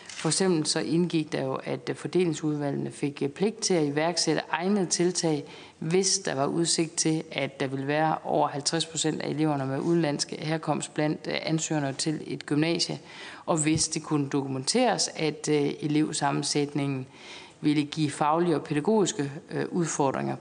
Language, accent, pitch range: Danish, native, 140-175 Hz